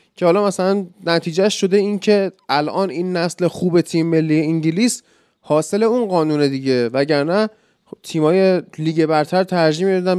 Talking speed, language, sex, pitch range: 140 wpm, Persian, male, 135-190 Hz